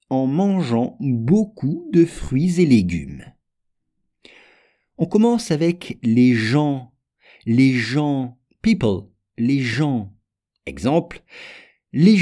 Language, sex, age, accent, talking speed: English, male, 50-69, French, 95 wpm